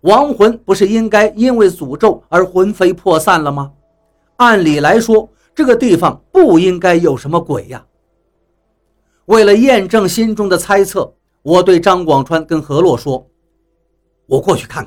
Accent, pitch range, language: native, 145-225 Hz, Chinese